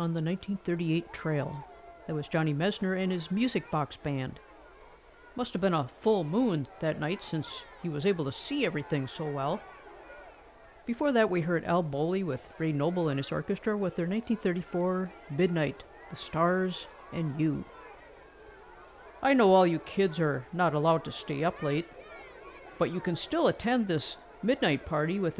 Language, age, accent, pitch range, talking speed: English, 50-69, American, 160-220 Hz, 170 wpm